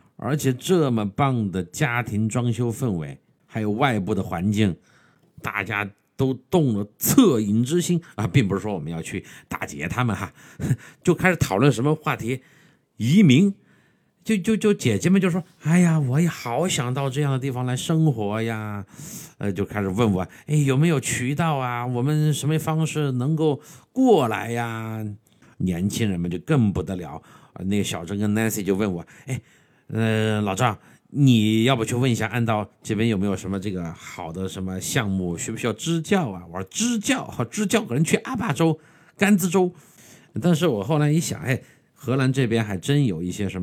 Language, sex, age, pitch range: Chinese, male, 50-69, 100-155 Hz